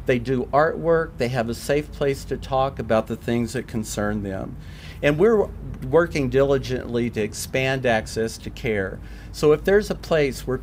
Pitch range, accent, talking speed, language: 110-140 Hz, American, 175 wpm, English